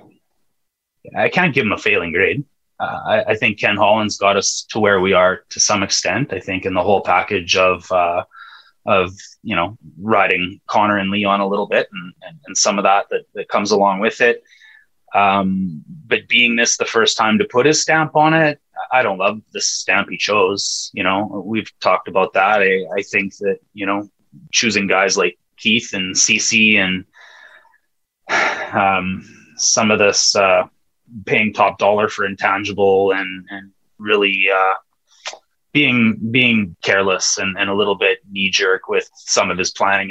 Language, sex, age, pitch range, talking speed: English, male, 20-39, 95-145 Hz, 180 wpm